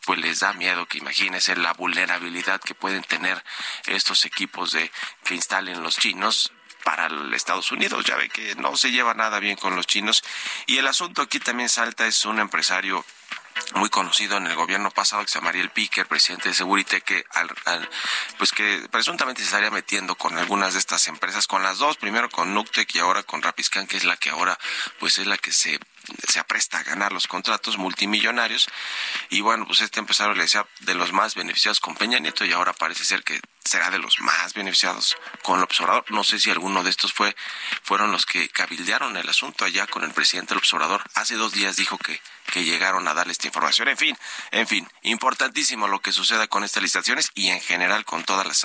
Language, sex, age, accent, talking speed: Spanish, male, 40-59, Mexican, 210 wpm